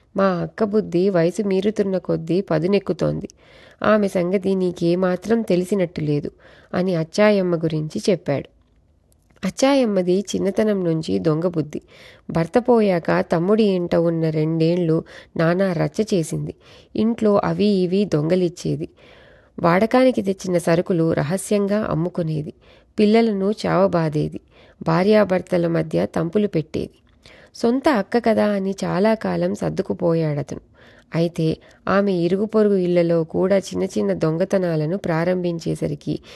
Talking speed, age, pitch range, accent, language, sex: 95 wpm, 30-49, 165-205 Hz, native, Telugu, female